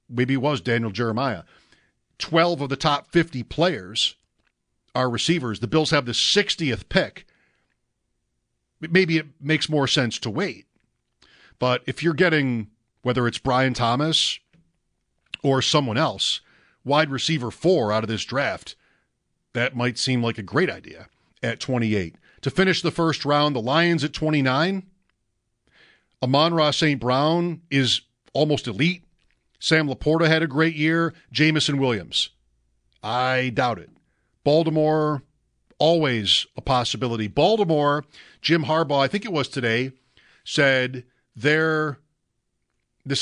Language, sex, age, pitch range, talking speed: English, male, 50-69, 115-155 Hz, 130 wpm